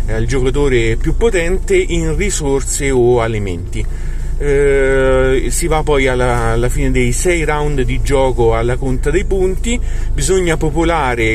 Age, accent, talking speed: 30-49, native, 140 wpm